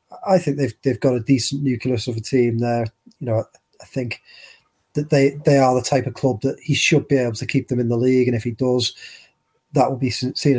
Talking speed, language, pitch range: 245 wpm, English, 120-140 Hz